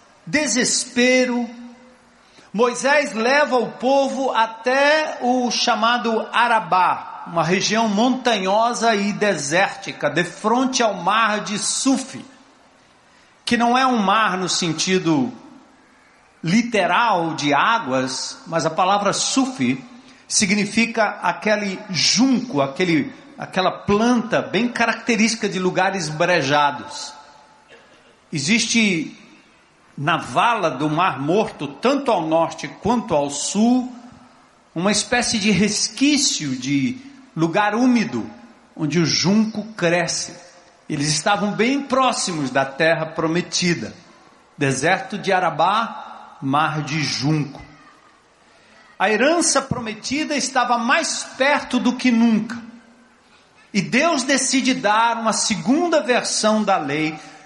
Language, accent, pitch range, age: Portuguese, Brazilian, 175-250 Hz, 50-69